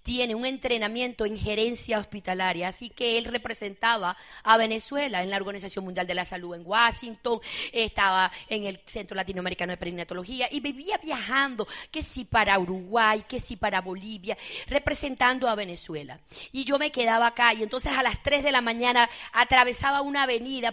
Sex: female